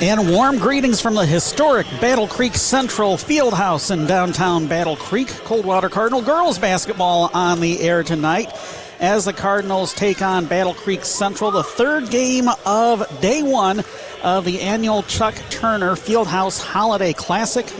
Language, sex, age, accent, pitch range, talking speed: English, male, 40-59, American, 165-210 Hz, 150 wpm